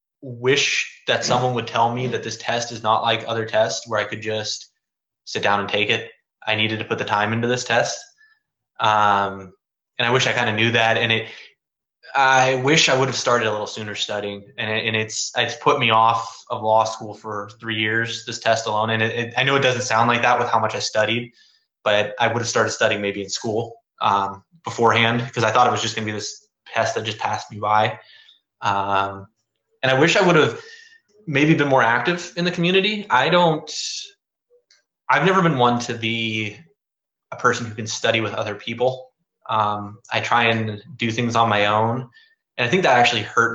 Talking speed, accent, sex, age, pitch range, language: 215 wpm, American, male, 20-39, 110-130 Hz, English